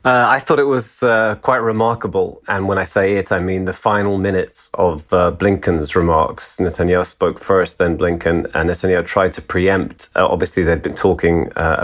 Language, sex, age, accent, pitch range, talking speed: English, male, 30-49, British, 85-105 Hz, 195 wpm